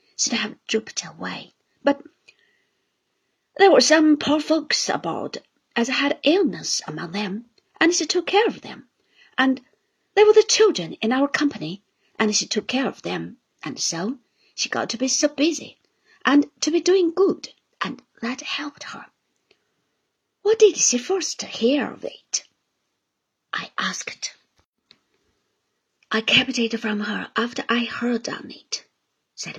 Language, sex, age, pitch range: Chinese, female, 50-69, 225-330 Hz